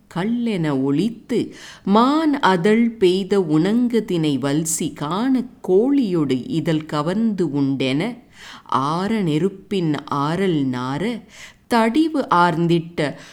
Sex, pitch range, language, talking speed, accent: female, 150-225 Hz, English, 80 wpm, Indian